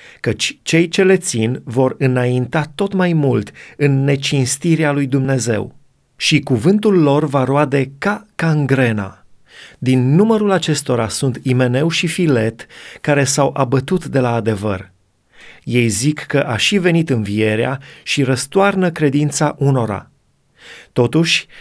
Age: 30-49